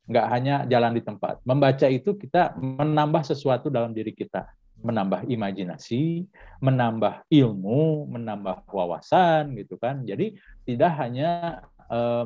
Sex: male